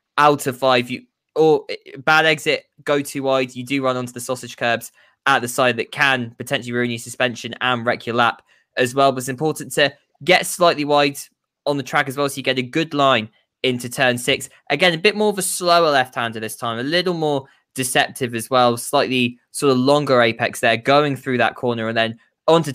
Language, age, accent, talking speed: English, 10-29, British, 215 wpm